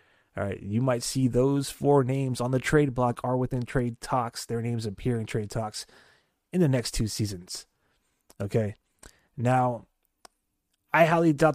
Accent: American